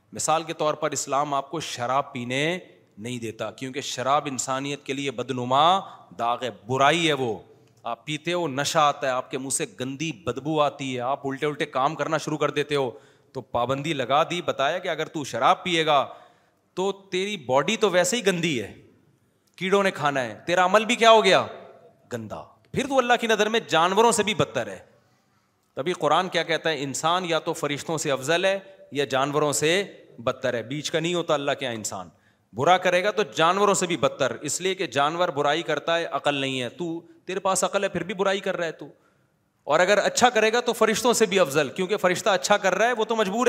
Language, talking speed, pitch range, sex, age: Urdu, 220 wpm, 140-185 Hz, male, 30-49